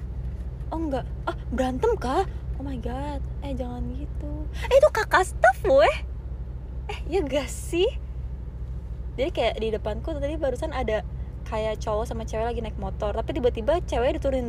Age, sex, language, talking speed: 20-39, female, Malay, 160 wpm